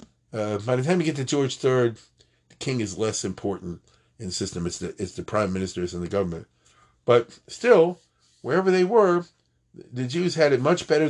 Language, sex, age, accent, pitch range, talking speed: English, male, 40-59, American, 95-135 Hz, 195 wpm